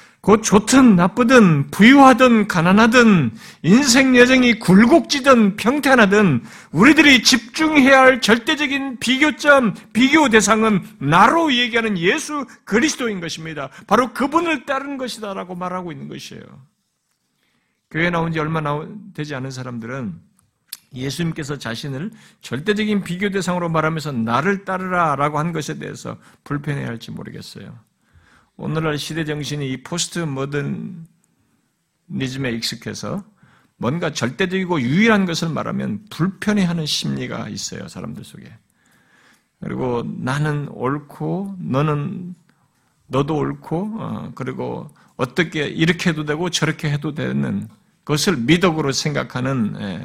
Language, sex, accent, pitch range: Korean, male, native, 145-220 Hz